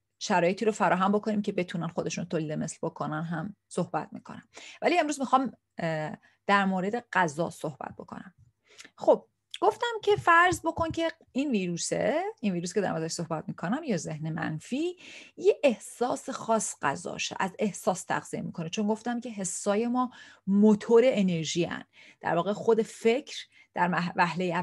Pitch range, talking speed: 175-225 Hz, 150 wpm